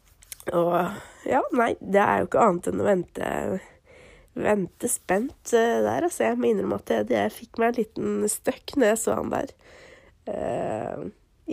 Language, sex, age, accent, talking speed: English, female, 30-49, Swedish, 175 wpm